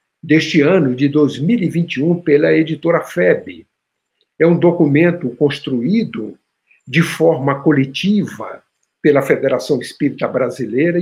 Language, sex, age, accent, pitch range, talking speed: Portuguese, male, 60-79, Brazilian, 125-170 Hz, 100 wpm